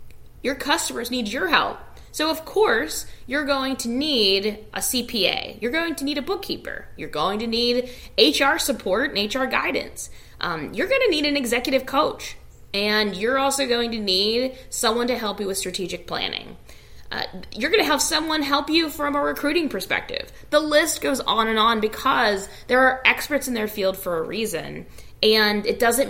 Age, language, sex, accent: 20-39, English, female, American